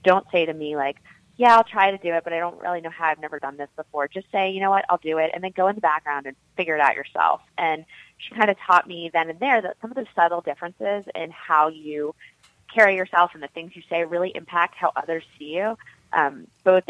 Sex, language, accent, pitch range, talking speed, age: female, English, American, 150-180 Hz, 265 wpm, 20-39